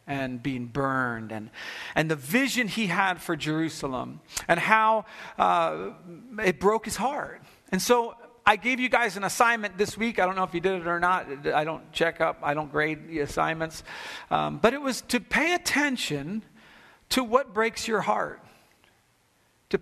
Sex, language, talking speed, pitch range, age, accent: male, English, 180 wpm, 160-220 Hz, 40-59, American